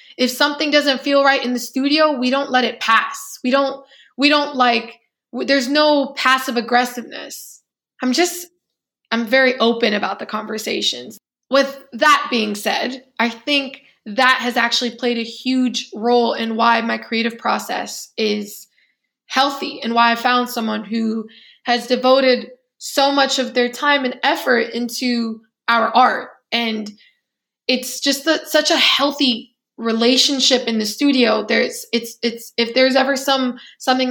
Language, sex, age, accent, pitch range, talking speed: English, female, 20-39, American, 230-275 Hz, 155 wpm